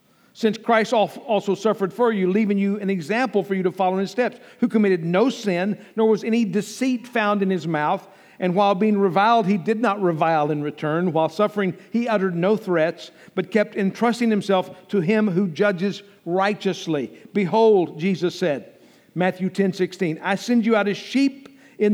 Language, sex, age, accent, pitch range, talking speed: English, male, 50-69, American, 180-230 Hz, 185 wpm